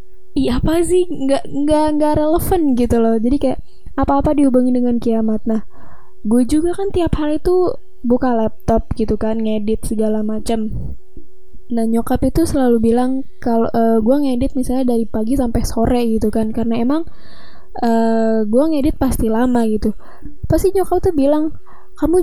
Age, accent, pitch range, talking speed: 10-29, native, 225-285 Hz, 155 wpm